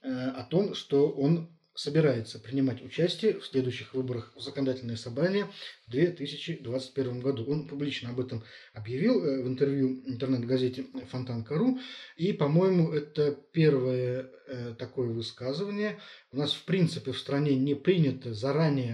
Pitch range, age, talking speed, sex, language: 125-150 Hz, 20-39, 125 wpm, male, Russian